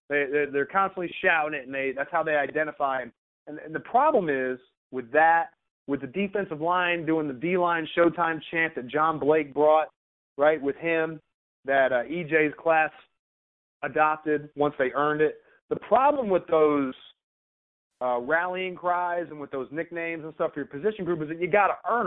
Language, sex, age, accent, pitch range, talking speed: English, male, 30-49, American, 145-185 Hz, 180 wpm